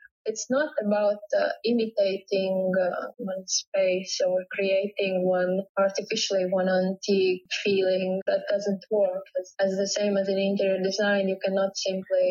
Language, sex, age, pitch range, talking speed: English, female, 20-39, 195-215 Hz, 140 wpm